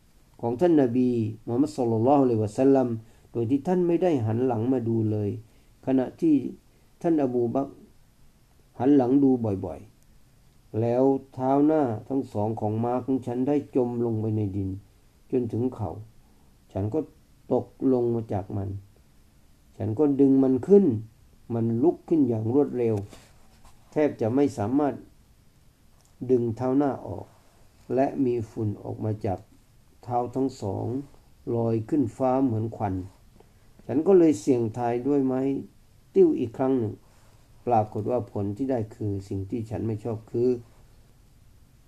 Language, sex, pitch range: Thai, male, 110-135 Hz